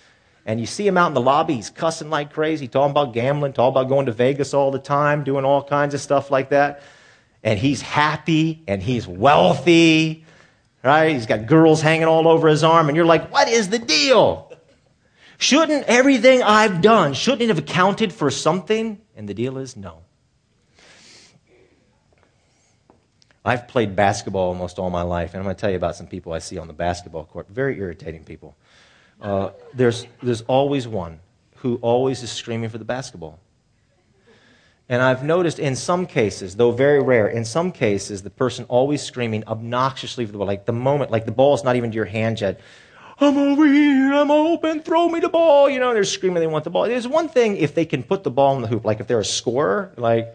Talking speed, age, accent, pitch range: 205 wpm, 40-59, American, 110-160 Hz